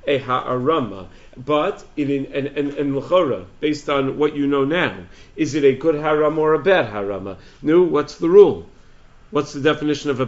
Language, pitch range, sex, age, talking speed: English, 135-155 Hz, male, 50-69, 180 wpm